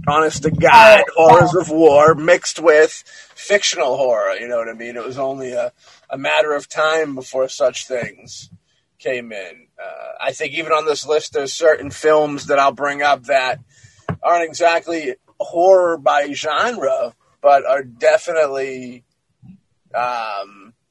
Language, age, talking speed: English, 30-49, 150 wpm